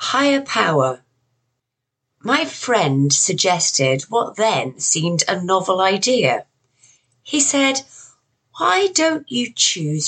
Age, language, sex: 40-59, English, female